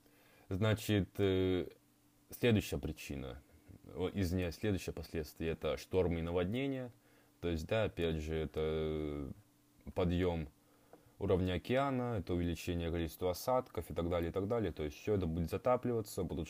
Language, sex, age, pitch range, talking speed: Russian, male, 20-39, 85-110 Hz, 130 wpm